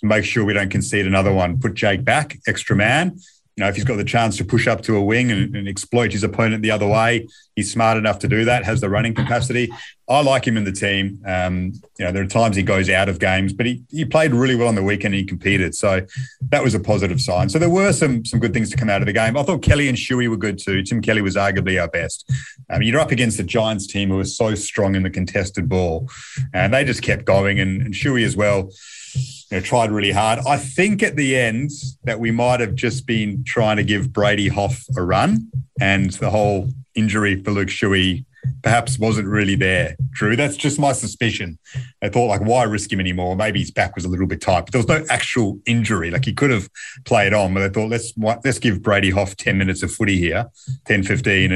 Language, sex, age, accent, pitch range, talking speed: English, male, 30-49, Australian, 100-125 Hz, 245 wpm